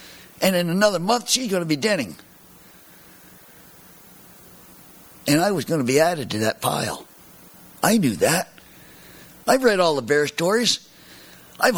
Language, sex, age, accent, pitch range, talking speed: English, male, 60-79, American, 110-185 Hz, 150 wpm